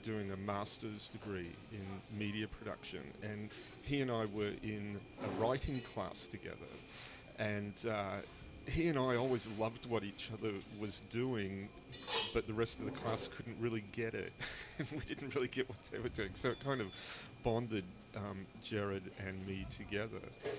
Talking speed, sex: 170 wpm, male